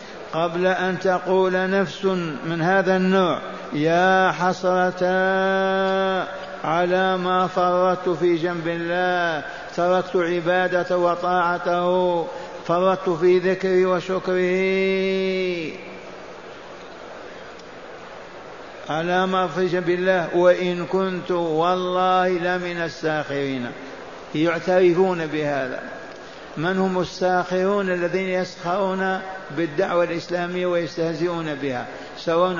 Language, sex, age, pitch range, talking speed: Arabic, male, 60-79, 170-185 Hz, 80 wpm